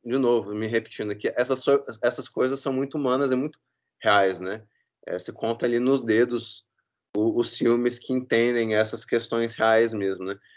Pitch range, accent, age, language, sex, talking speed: 110-145 Hz, Brazilian, 20-39, Portuguese, male, 175 wpm